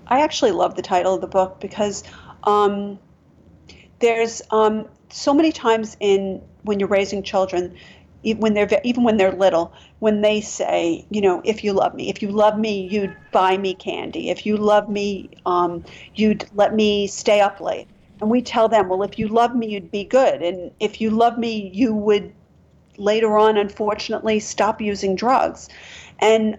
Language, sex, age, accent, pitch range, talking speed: English, female, 40-59, American, 190-220 Hz, 180 wpm